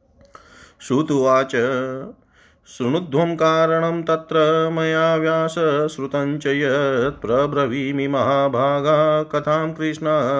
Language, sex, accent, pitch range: Hindi, male, native, 135-150 Hz